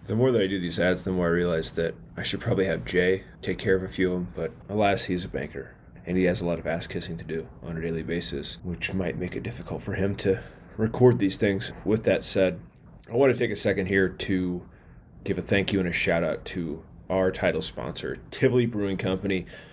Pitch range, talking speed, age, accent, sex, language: 90-100 Hz, 245 wpm, 20-39, American, male, English